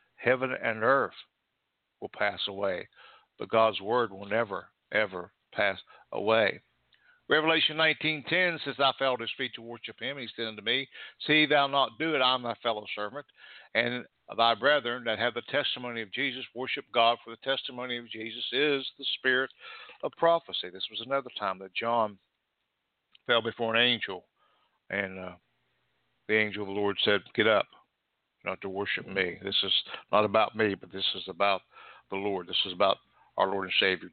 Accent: American